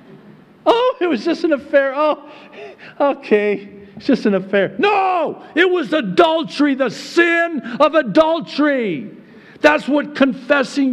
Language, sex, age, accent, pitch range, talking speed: English, male, 50-69, American, 200-280 Hz, 120 wpm